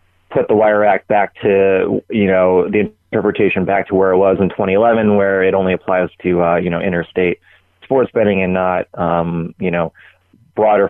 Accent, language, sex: American, English, male